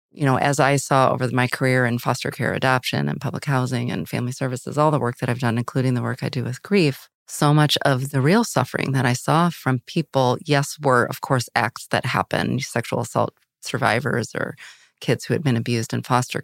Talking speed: 220 wpm